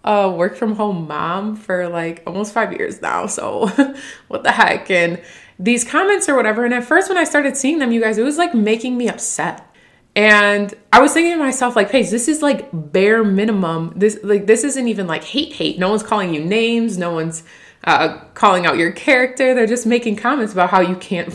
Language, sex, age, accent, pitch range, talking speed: English, female, 20-39, American, 180-240 Hz, 215 wpm